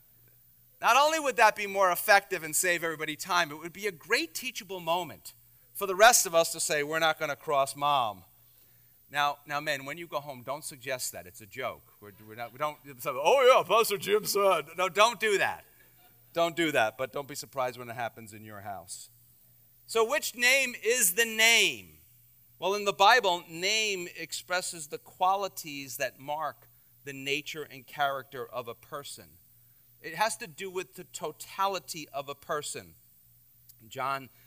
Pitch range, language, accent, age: 130-185 Hz, English, American, 40-59